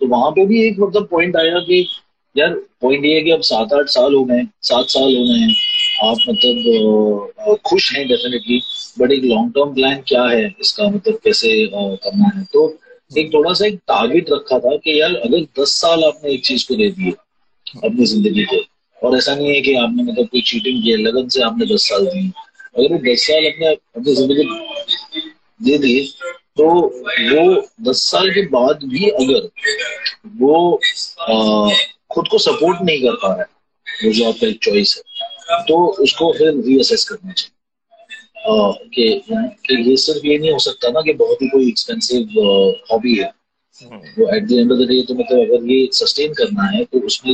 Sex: male